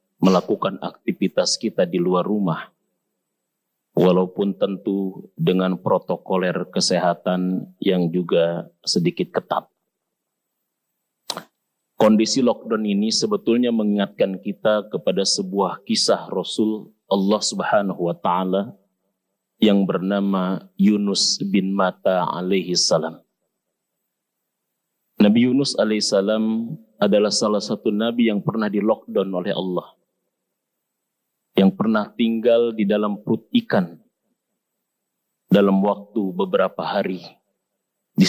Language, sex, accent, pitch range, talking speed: Indonesian, male, native, 95-110 Hz, 90 wpm